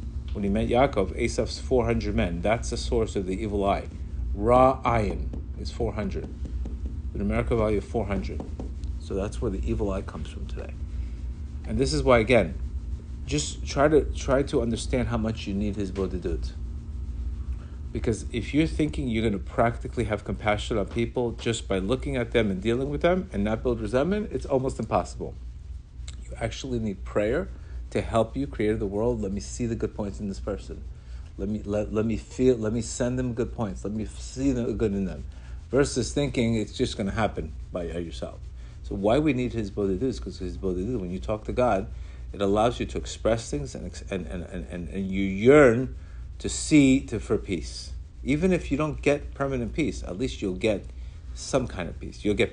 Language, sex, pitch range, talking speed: English, male, 75-115 Hz, 200 wpm